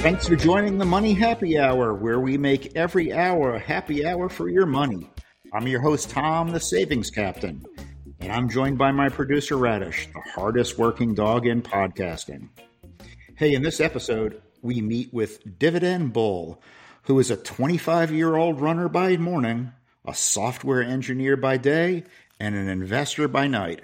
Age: 50-69